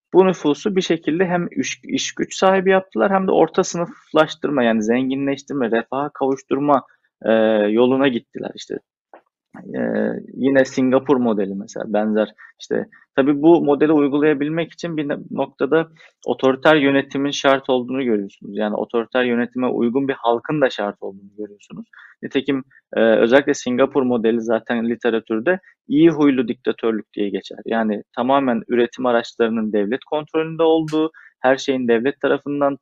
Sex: male